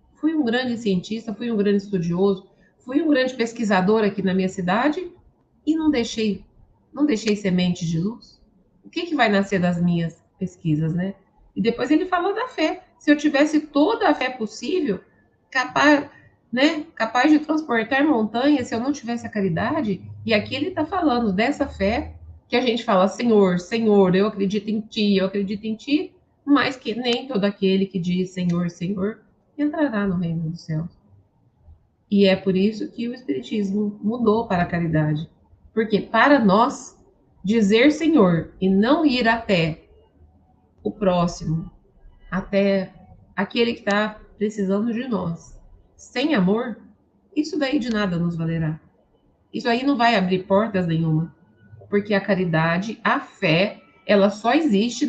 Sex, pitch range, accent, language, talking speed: female, 185-245 Hz, Brazilian, Portuguese, 160 wpm